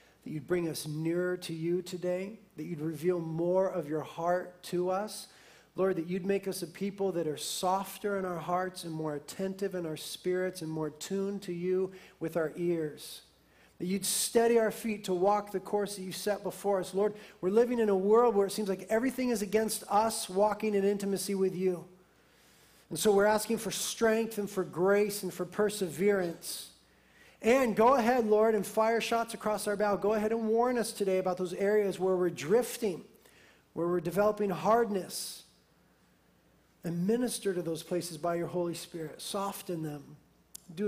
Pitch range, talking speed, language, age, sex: 175-205 Hz, 185 wpm, English, 40-59, male